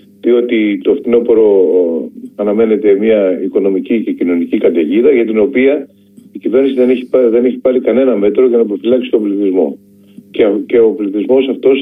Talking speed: 155 wpm